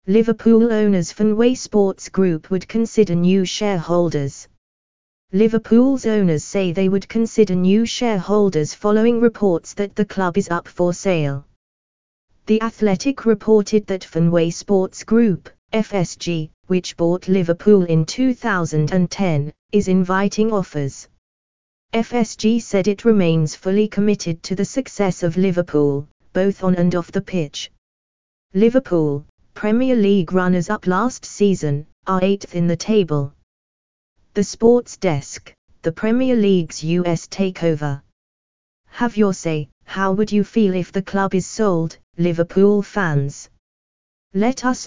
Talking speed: 125 wpm